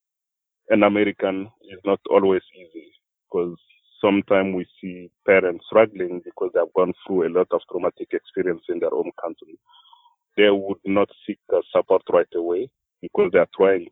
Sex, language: male, English